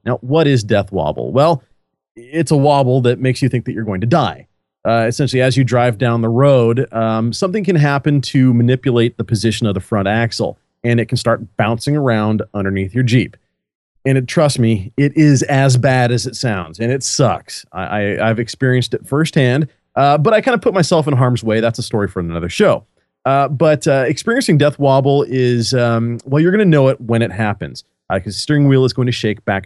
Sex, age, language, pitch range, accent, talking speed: male, 30-49, English, 110-145 Hz, American, 225 wpm